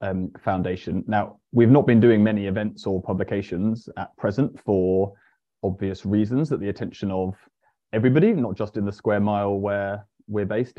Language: English